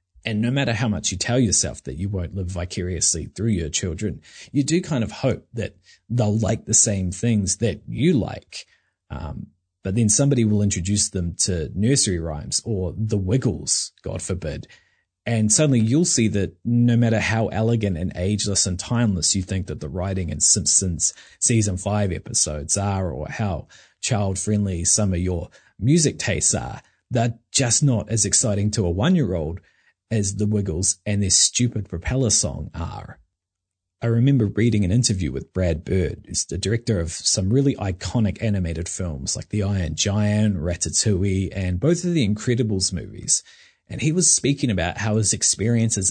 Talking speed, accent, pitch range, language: 175 wpm, Australian, 90-115 Hz, English